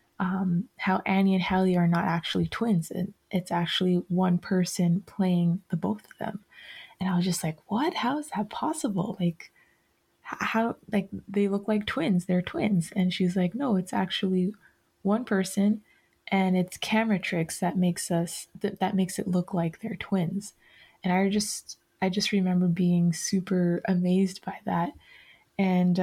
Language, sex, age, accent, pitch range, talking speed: English, female, 20-39, American, 180-210 Hz, 170 wpm